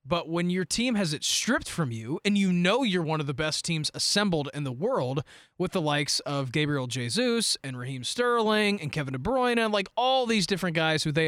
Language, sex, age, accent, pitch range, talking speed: English, male, 20-39, American, 155-210 Hz, 230 wpm